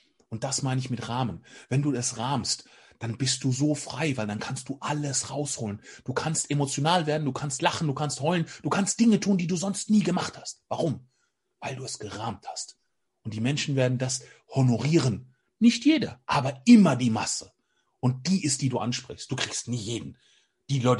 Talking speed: 205 wpm